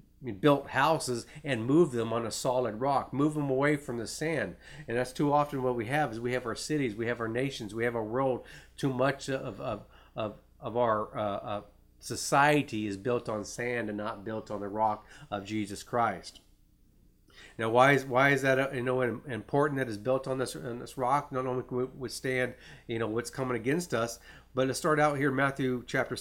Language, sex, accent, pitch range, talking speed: English, male, American, 115-135 Hz, 215 wpm